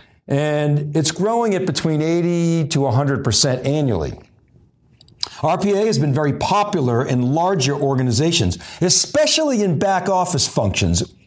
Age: 50-69